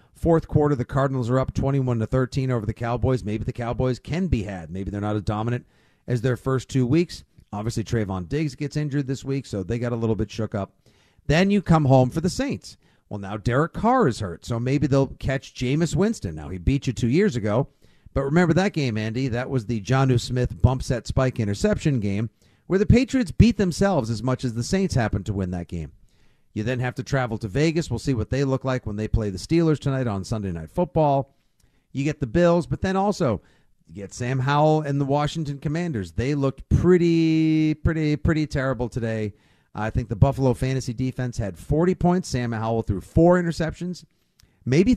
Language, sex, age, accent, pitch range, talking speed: English, male, 50-69, American, 115-160 Hz, 215 wpm